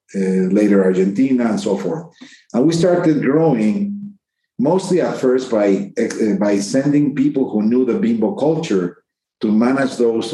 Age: 50-69